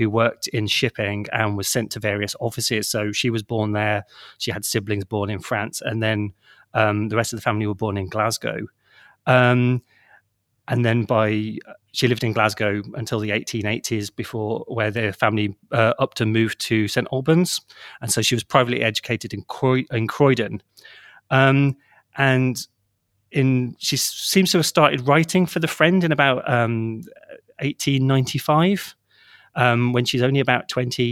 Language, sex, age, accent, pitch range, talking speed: English, male, 30-49, British, 110-130 Hz, 165 wpm